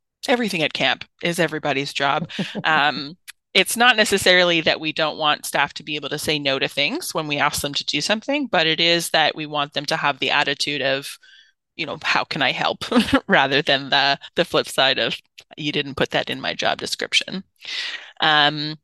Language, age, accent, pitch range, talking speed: English, 30-49, American, 150-190 Hz, 205 wpm